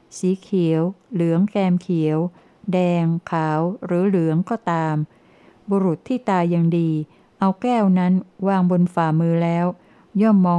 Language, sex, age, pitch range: Thai, female, 60-79, 170-200 Hz